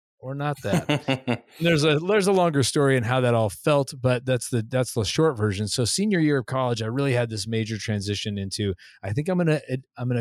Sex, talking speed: male, 245 wpm